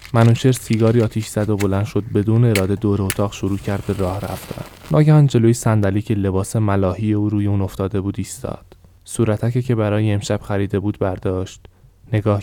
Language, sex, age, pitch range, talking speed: Persian, male, 20-39, 100-115 Hz, 175 wpm